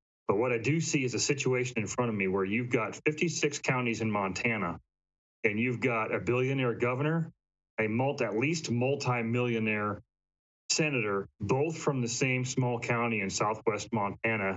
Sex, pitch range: male, 110-135 Hz